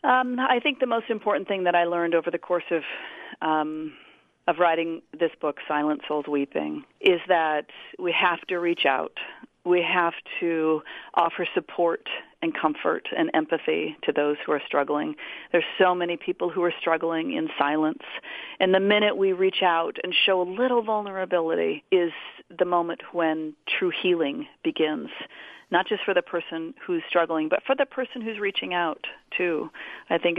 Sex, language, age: female, English, 40-59